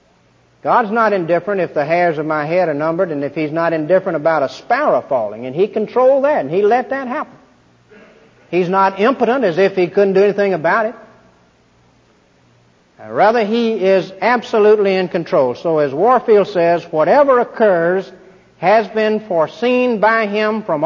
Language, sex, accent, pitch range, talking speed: English, male, American, 170-225 Hz, 165 wpm